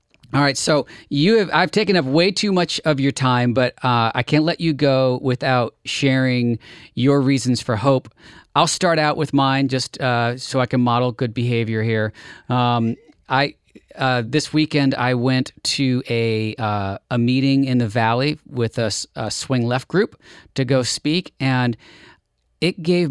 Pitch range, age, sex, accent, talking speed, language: 115-140 Hz, 40-59, male, American, 175 wpm, English